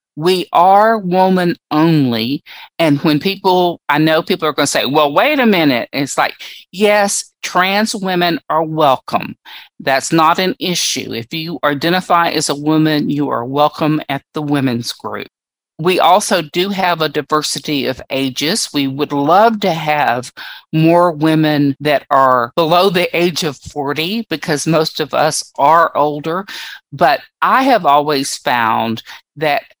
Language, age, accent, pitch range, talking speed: English, 50-69, American, 145-185 Hz, 155 wpm